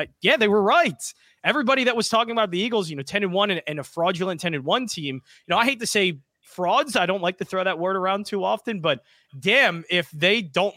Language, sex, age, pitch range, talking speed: English, male, 20-39, 155-205 Hz, 255 wpm